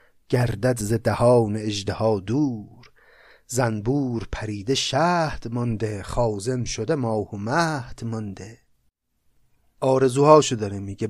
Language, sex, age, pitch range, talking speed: Persian, male, 30-49, 115-145 Hz, 90 wpm